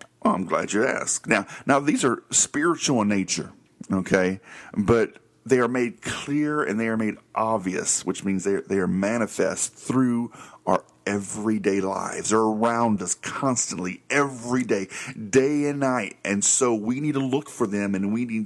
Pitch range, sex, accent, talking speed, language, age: 100-125 Hz, male, American, 175 wpm, English, 40-59